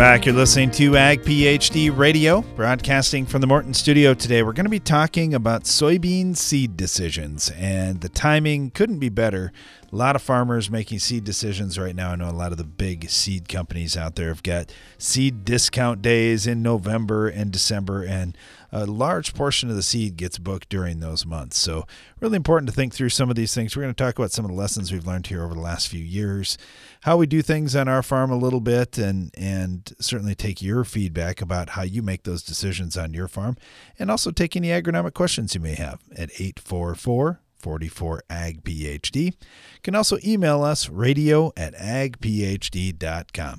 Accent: American